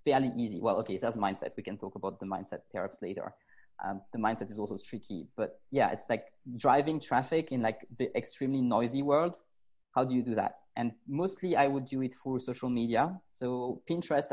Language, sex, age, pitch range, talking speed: English, male, 20-39, 115-135 Hz, 200 wpm